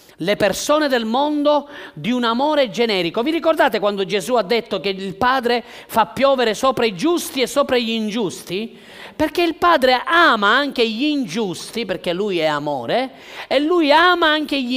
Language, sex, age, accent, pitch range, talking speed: Italian, male, 40-59, native, 185-280 Hz, 170 wpm